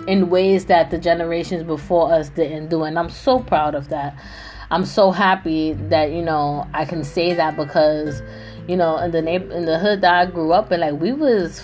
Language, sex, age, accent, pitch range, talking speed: English, female, 20-39, American, 150-180 Hz, 215 wpm